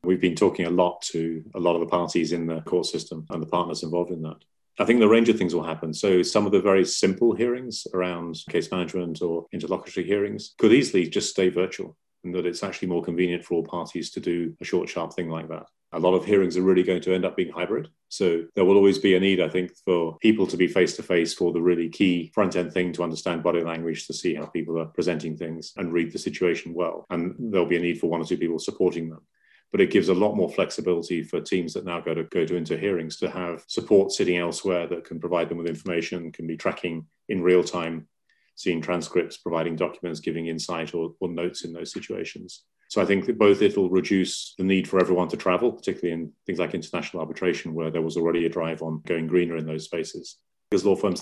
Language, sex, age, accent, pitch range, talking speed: English, male, 40-59, British, 80-90 Hz, 240 wpm